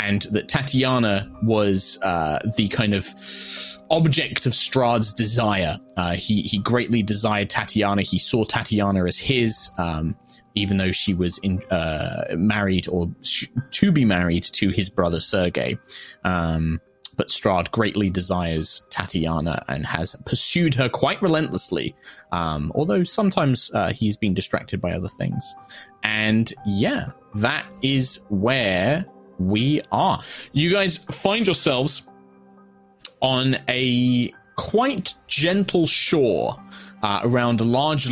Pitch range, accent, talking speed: 95-125 Hz, British, 130 wpm